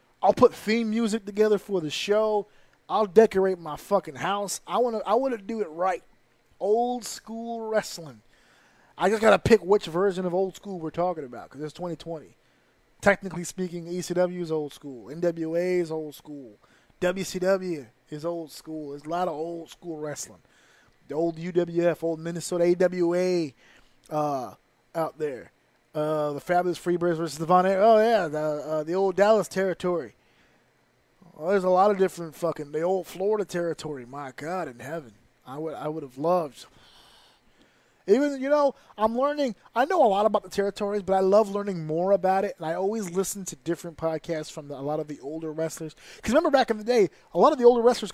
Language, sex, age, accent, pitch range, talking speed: English, male, 20-39, American, 160-205 Hz, 190 wpm